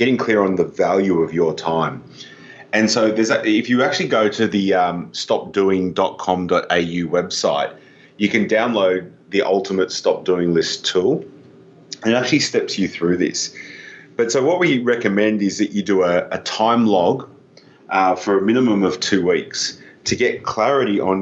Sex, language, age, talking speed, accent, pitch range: male, English, 30-49, 175 wpm, Australian, 90-105 Hz